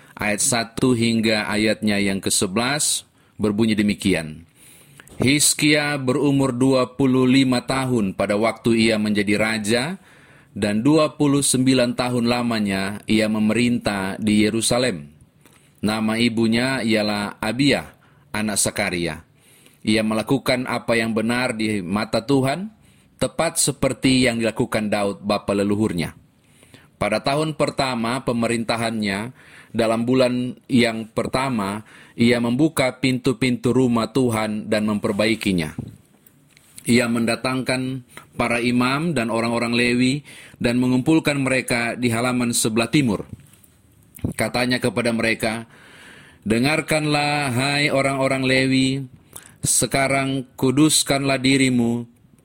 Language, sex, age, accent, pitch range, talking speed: Indonesian, male, 30-49, native, 110-135 Hz, 95 wpm